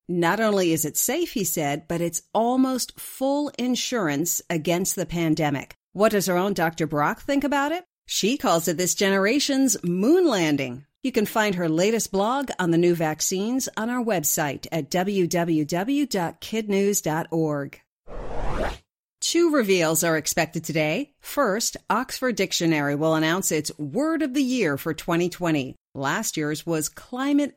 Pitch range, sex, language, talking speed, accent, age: 160-230 Hz, female, English, 145 wpm, American, 50-69